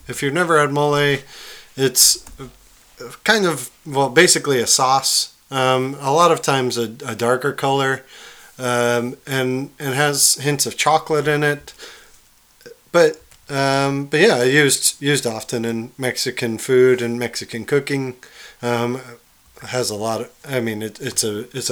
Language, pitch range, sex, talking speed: English, 120-145 Hz, male, 150 wpm